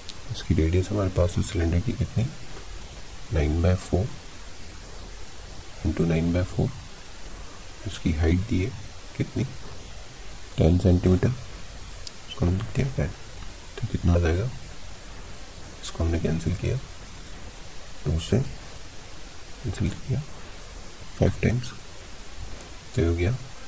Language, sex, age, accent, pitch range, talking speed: Hindi, male, 40-59, native, 85-100 Hz, 115 wpm